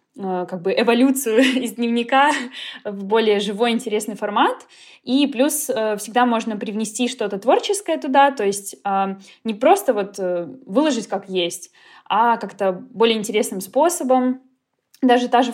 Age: 20-39